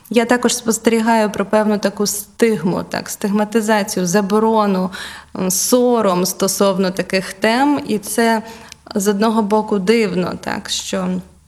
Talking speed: 115 wpm